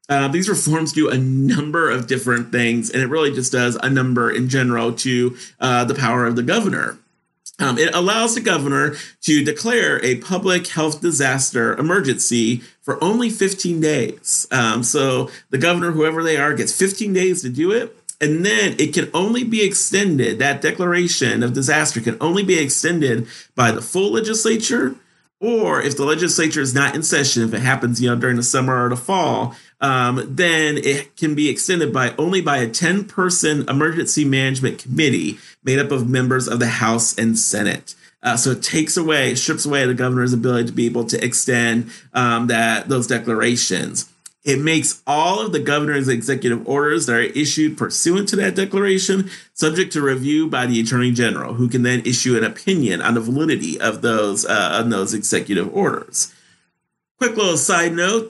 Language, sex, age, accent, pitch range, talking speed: English, male, 40-59, American, 125-165 Hz, 185 wpm